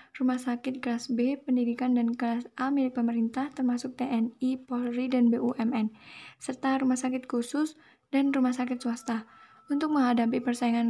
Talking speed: 145 wpm